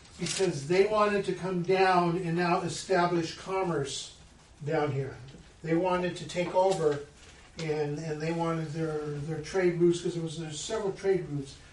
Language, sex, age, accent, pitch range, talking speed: English, male, 50-69, American, 140-175 Hz, 170 wpm